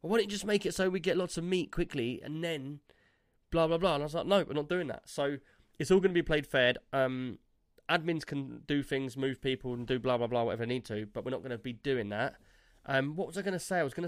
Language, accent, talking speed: English, British, 290 wpm